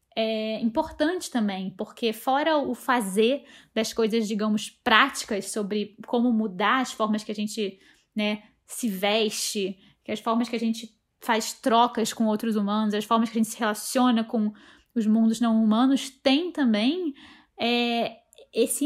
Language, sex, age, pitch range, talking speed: Portuguese, female, 10-29, 215-265 Hz, 150 wpm